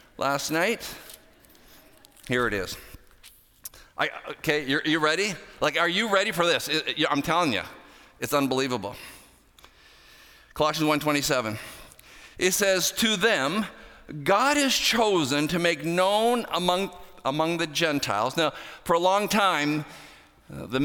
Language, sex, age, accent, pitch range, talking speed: English, male, 50-69, American, 150-210 Hz, 120 wpm